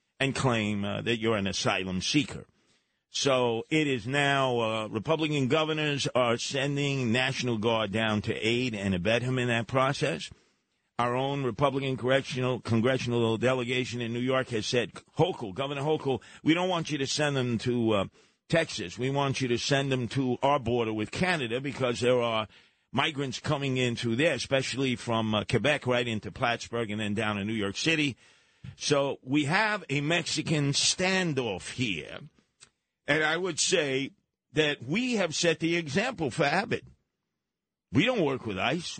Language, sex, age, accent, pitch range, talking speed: English, male, 50-69, American, 120-160 Hz, 165 wpm